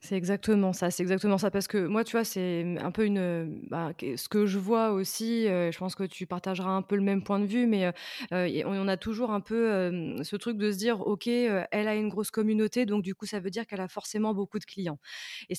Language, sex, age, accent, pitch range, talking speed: French, female, 20-39, French, 190-220 Hz, 250 wpm